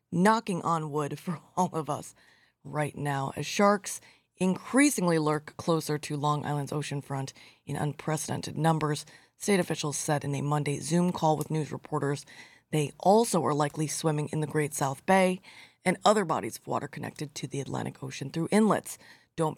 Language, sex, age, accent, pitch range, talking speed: English, female, 20-39, American, 145-180 Hz, 170 wpm